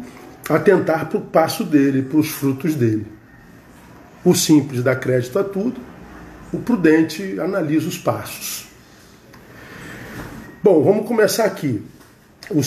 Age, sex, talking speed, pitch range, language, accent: 40-59, male, 120 wpm, 125-180 Hz, Portuguese, Brazilian